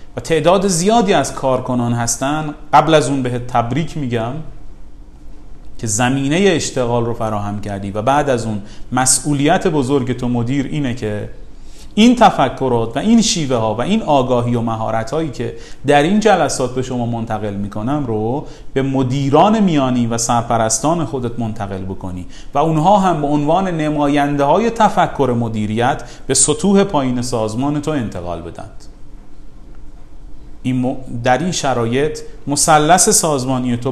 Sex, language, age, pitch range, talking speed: male, Persian, 30-49, 115-150 Hz, 140 wpm